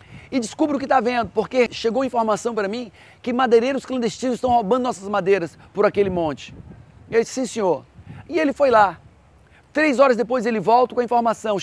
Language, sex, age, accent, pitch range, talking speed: Portuguese, male, 40-59, Brazilian, 200-255 Hz, 200 wpm